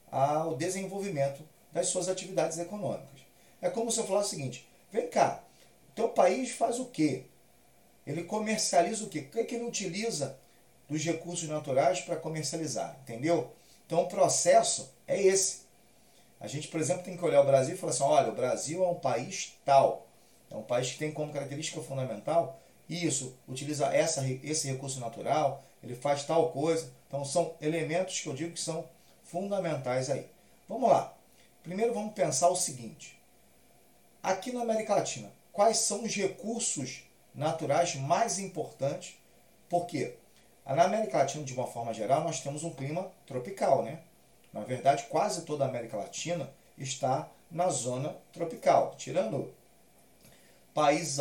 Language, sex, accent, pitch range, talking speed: Portuguese, male, Brazilian, 135-180 Hz, 155 wpm